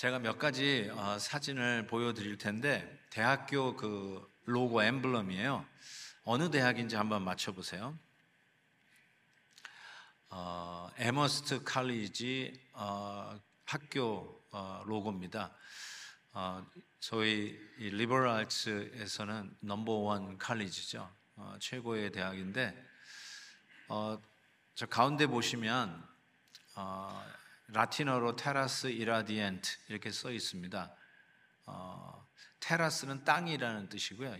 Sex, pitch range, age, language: male, 105-135 Hz, 40-59, Korean